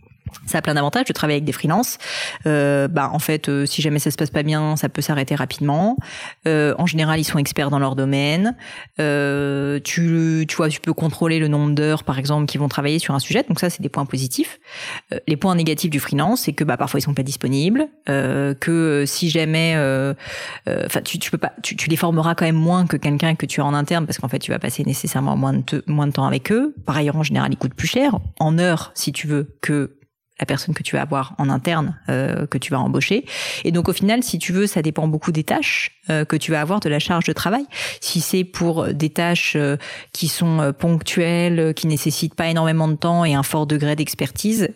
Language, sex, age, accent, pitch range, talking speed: French, female, 30-49, French, 145-170 Hz, 245 wpm